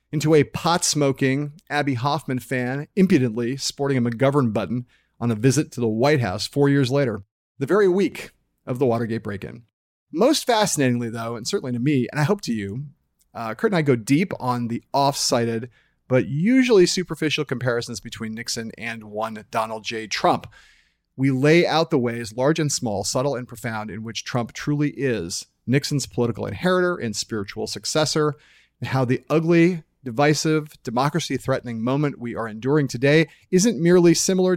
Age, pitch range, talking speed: 40-59, 120-155 Hz, 170 wpm